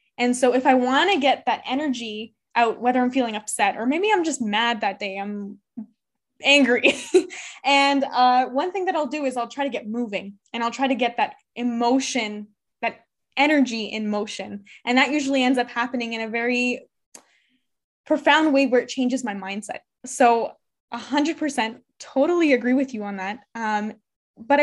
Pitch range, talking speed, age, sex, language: 220-270 Hz, 180 wpm, 10-29, female, English